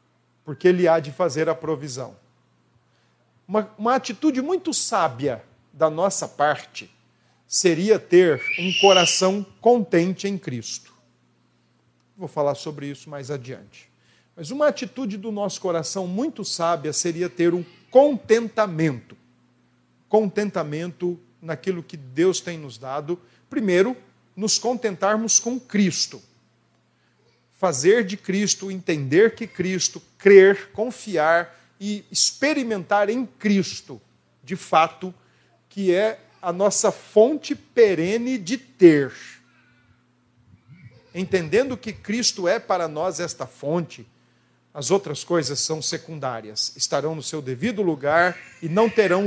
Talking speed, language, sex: 115 wpm, Portuguese, male